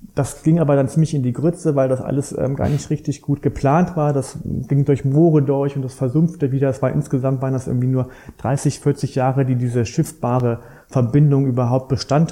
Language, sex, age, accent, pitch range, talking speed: German, male, 30-49, German, 130-155 Hz, 205 wpm